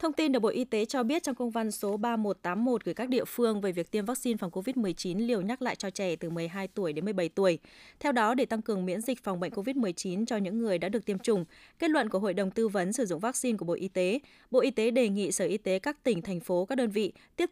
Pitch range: 190-240 Hz